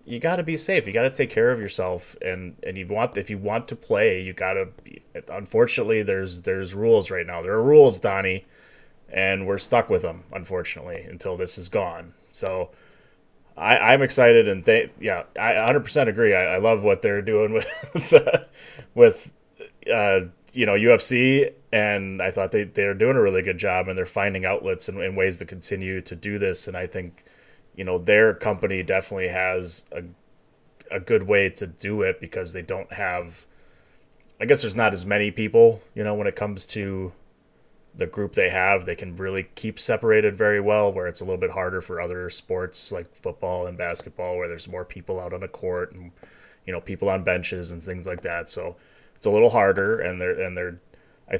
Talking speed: 205 wpm